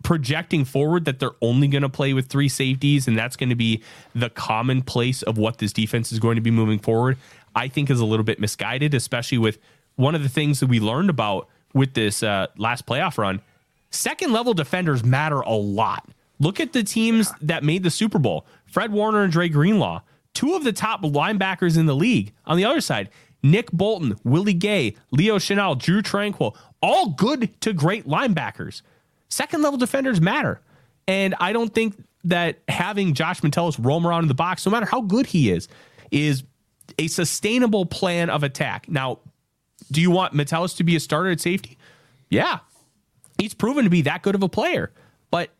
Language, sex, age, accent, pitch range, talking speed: English, male, 30-49, American, 125-185 Hz, 195 wpm